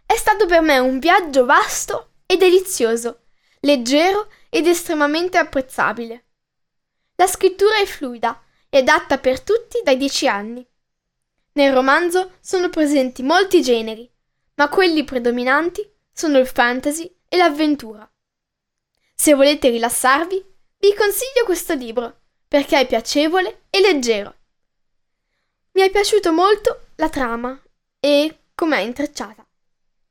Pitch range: 255-360 Hz